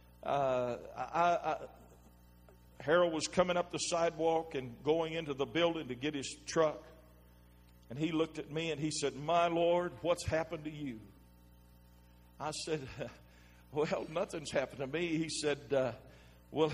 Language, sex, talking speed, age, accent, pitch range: English, male, 155 wpm, 50-69, American, 135-175 Hz